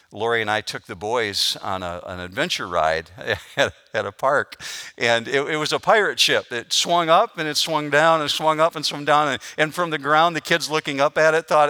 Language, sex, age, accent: English, male, 50-69, American